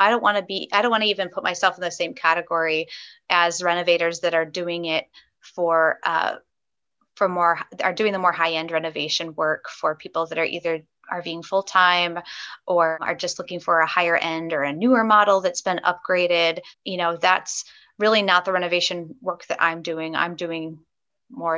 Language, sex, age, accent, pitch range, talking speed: English, female, 20-39, American, 170-205 Hz, 190 wpm